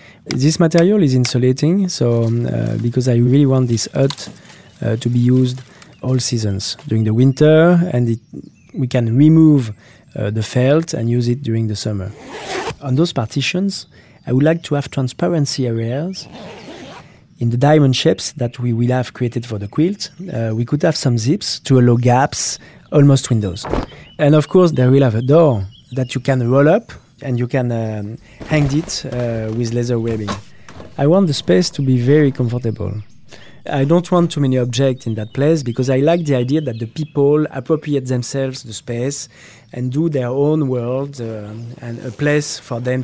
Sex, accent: male, French